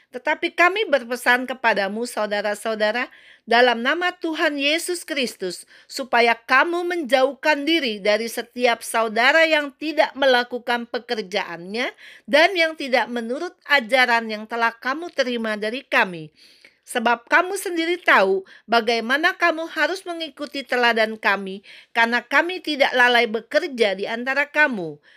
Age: 50-69